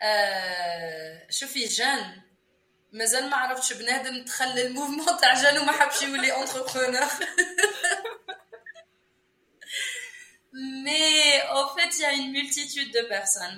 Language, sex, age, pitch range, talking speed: English, female, 20-39, 210-255 Hz, 75 wpm